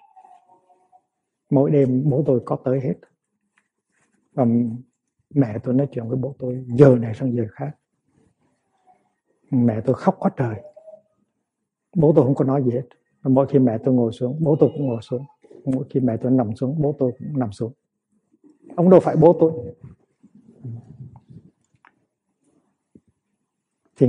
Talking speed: 150 wpm